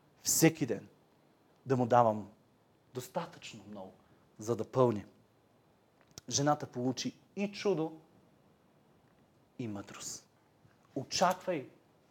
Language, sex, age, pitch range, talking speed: Bulgarian, male, 40-59, 130-175 Hz, 85 wpm